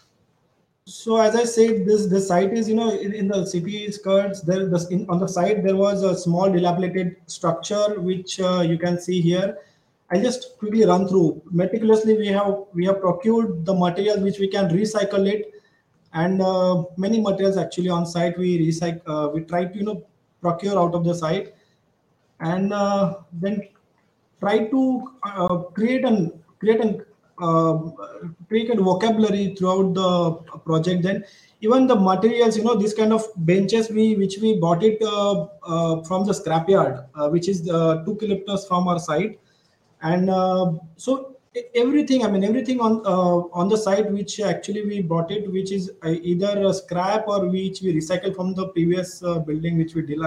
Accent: Indian